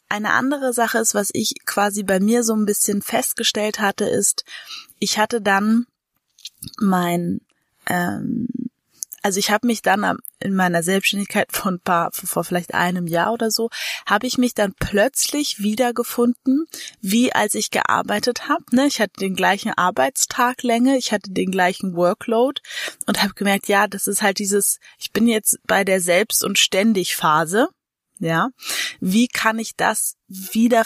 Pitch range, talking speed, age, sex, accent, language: 190-235 Hz, 160 wpm, 20-39, female, German, German